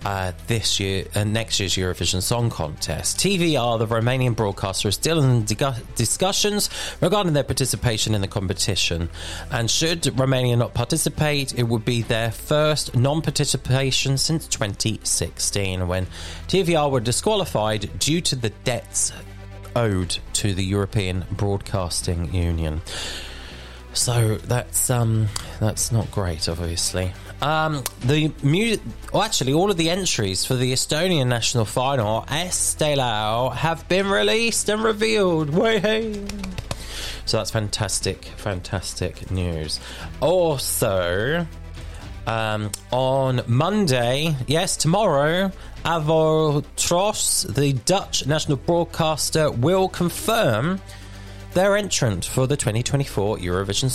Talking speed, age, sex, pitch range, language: 115 wpm, 30-49, male, 95-150 Hz, English